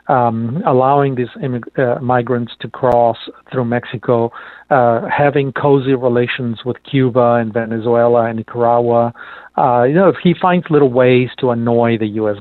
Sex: male